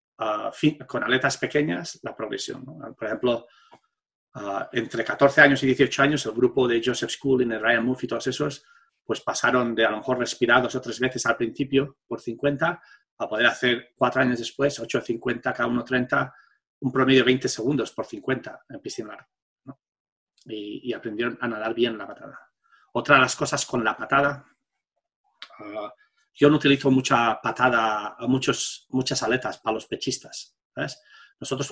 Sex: male